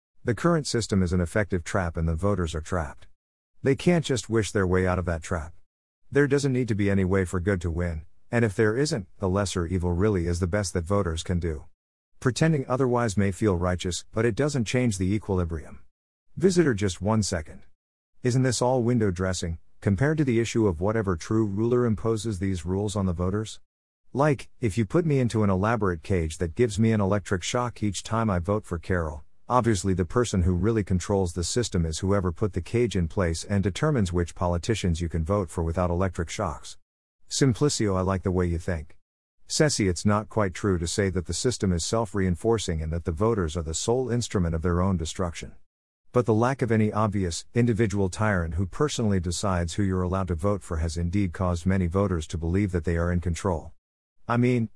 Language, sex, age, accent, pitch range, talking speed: English, male, 50-69, American, 90-115 Hz, 210 wpm